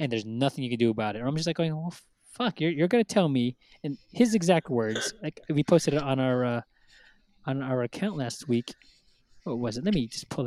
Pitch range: 125-160 Hz